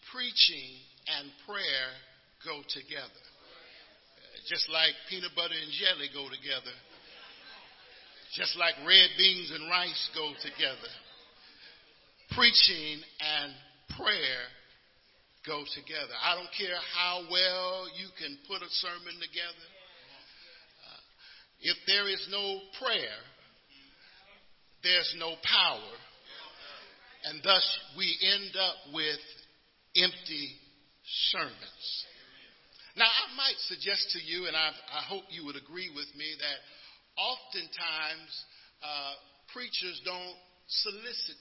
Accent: American